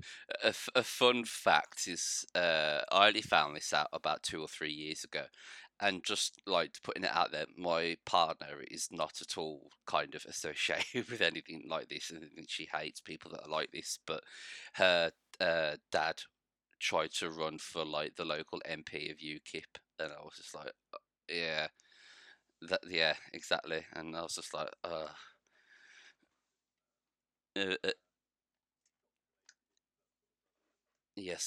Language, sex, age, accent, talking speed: English, male, 30-49, British, 150 wpm